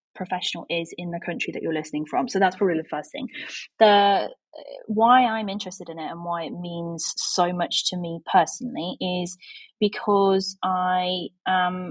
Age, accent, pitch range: 20-39, British, 175-210 Hz